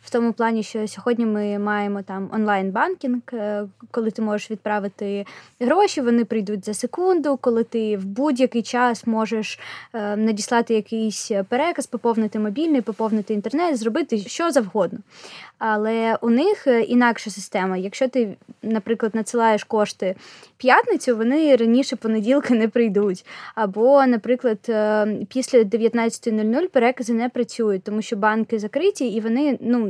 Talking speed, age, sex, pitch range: 130 wpm, 20-39, female, 215-250 Hz